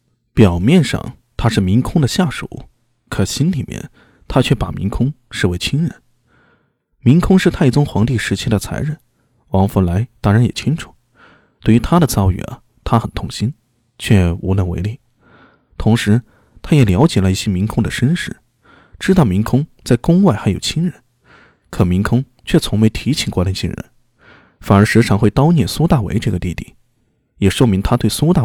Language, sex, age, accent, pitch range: Chinese, male, 20-39, native, 100-135 Hz